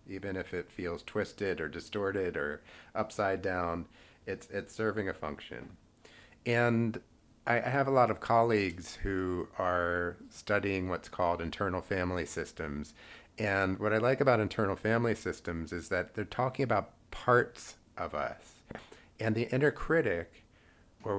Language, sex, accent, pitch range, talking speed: English, male, American, 95-120 Hz, 145 wpm